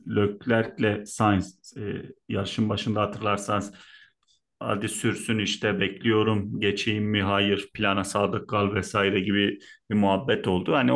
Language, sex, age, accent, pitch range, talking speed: Turkish, male, 40-59, native, 100-120 Hz, 115 wpm